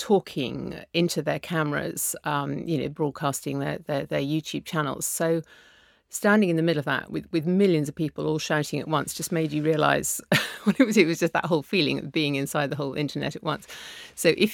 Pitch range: 145-165 Hz